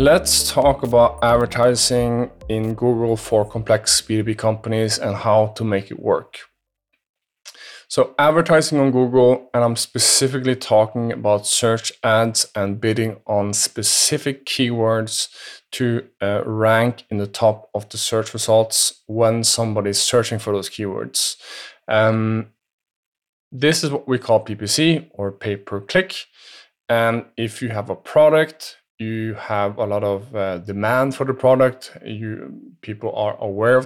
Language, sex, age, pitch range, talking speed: English, male, 20-39, 110-130 Hz, 140 wpm